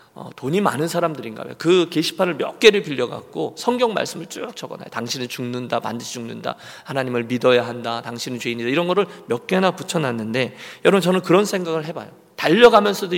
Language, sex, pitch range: Korean, male, 120-170 Hz